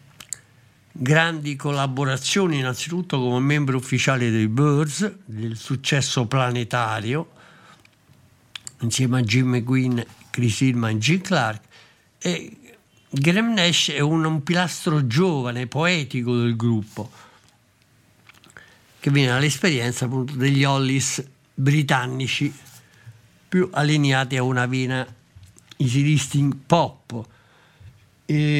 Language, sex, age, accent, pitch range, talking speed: Italian, male, 60-79, native, 125-155 Hz, 95 wpm